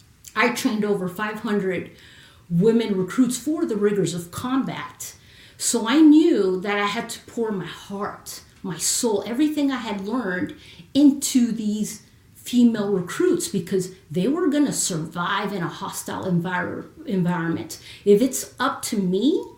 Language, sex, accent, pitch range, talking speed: English, female, American, 185-245 Hz, 140 wpm